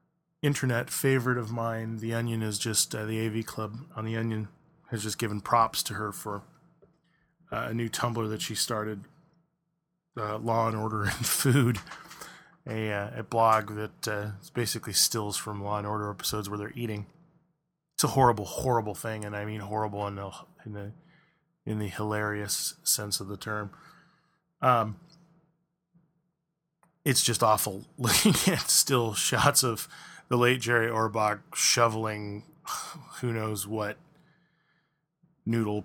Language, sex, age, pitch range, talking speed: English, male, 20-39, 105-165 Hz, 150 wpm